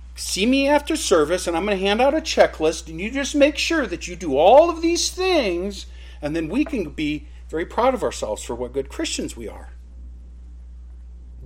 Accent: American